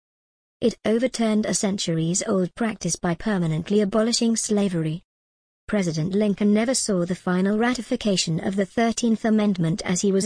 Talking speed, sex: 135 wpm, male